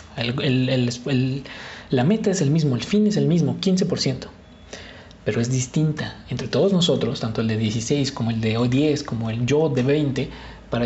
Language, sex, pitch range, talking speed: English, male, 120-155 Hz, 195 wpm